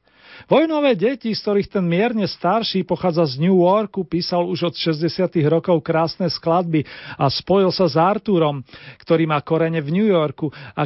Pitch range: 160-190 Hz